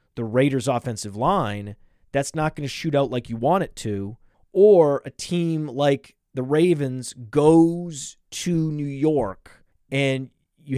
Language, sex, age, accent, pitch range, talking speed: English, male, 30-49, American, 135-195 Hz, 150 wpm